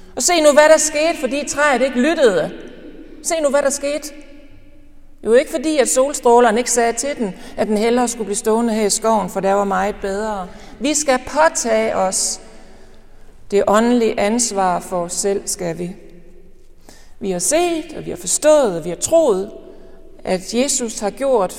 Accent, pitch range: native, 195-275 Hz